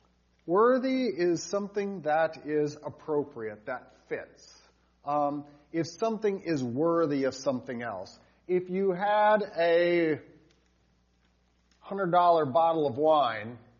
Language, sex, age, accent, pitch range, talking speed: English, male, 40-59, American, 130-180 Hz, 105 wpm